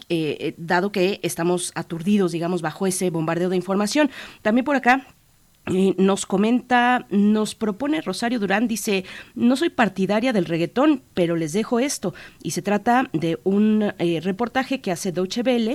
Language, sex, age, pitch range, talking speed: Spanish, female, 30-49, 175-215 Hz, 155 wpm